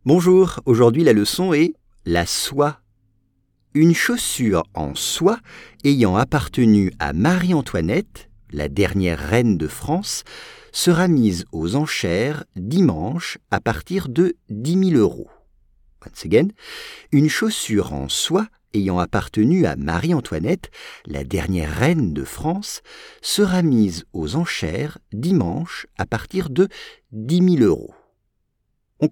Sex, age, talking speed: male, 50-69, 120 wpm